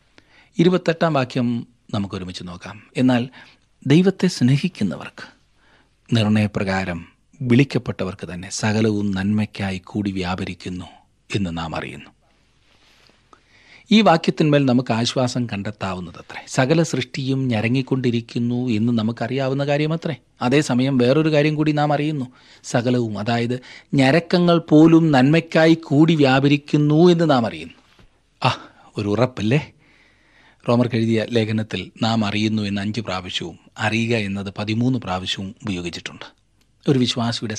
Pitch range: 100-130 Hz